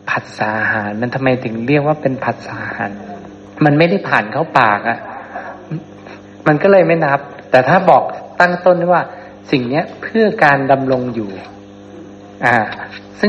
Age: 60-79